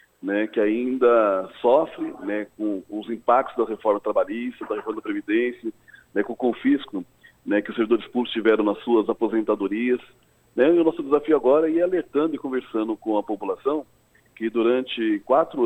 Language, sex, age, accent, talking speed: Portuguese, male, 40-59, Brazilian, 175 wpm